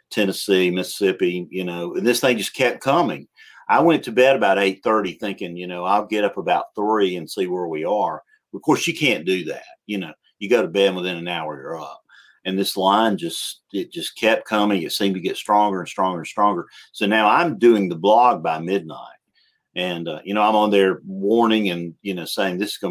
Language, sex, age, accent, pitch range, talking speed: English, male, 50-69, American, 90-125 Hz, 225 wpm